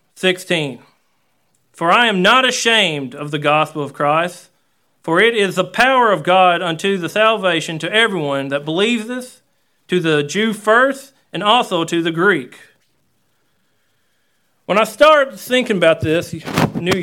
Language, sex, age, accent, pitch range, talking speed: English, male, 40-59, American, 160-205 Hz, 150 wpm